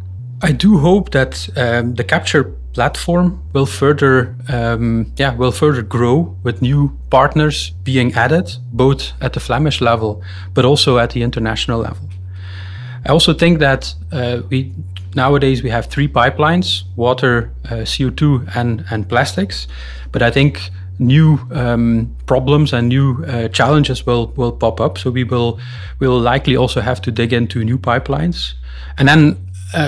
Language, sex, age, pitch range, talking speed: English, male, 30-49, 110-135 Hz, 160 wpm